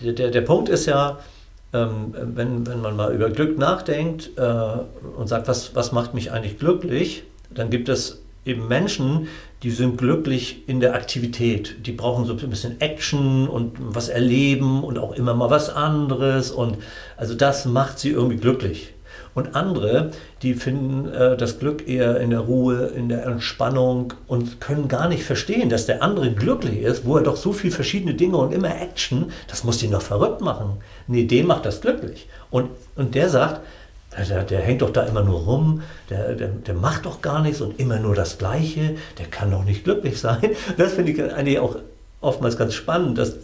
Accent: German